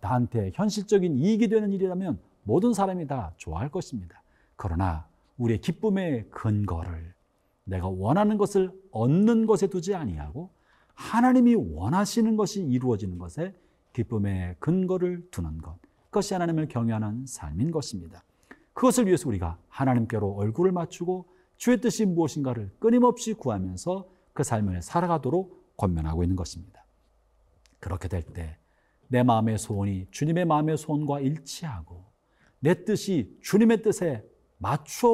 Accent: native